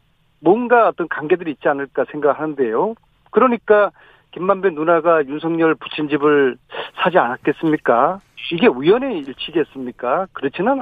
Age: 40-59